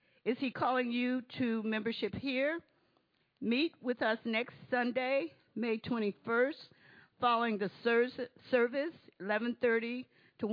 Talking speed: 110 wpm